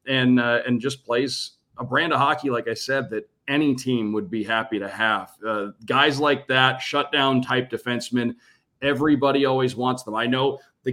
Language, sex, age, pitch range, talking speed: English, male, 40-59, 125-145 Hz, 180 wpm